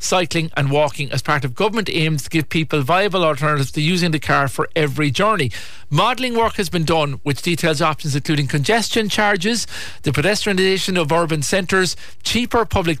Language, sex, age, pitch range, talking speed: English, male, 50-69, 145-175 Hz, 175 wpm